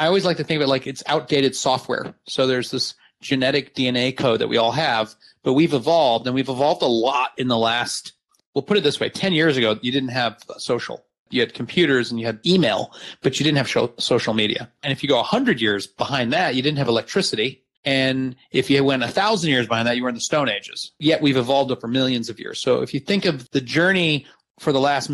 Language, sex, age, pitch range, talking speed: English, male, 30-49, 120-150 Hz, 240 wpm